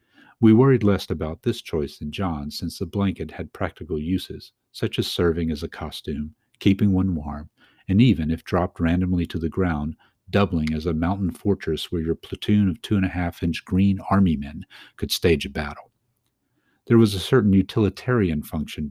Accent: American